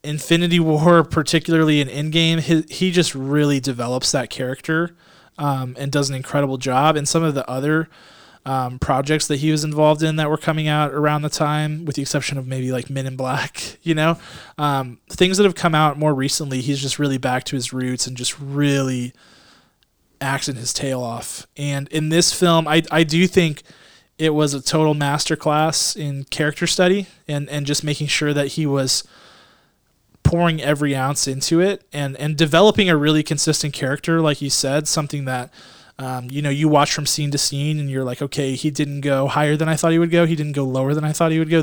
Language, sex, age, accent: English, male, 20-39, American